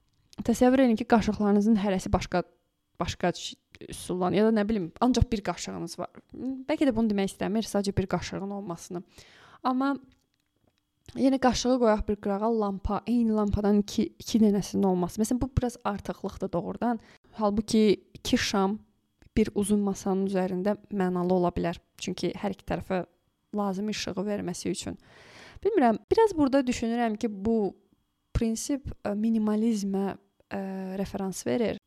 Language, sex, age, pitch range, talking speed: Turkish, female, 20-39, 190-225 Hz, 135 wpm